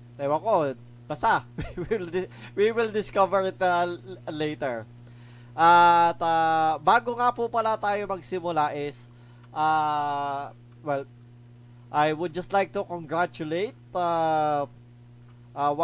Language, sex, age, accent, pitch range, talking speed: Filipino, male, 20-39, native, 120-170 Hz, 100 wpm